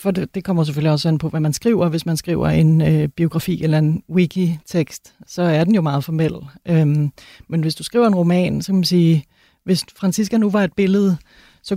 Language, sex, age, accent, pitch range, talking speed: Danish, female, 30-49, native, 165-195 Hz, 220 wpm